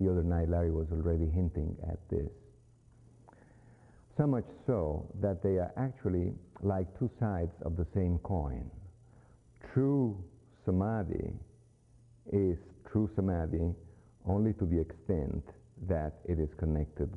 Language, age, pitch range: English, 50-69, 80-105 Hz